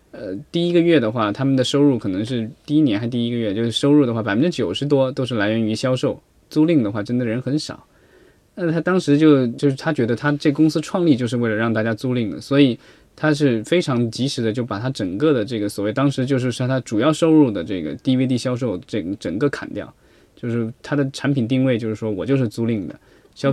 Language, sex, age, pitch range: Chinese, male, 20-39, 110-140 Hz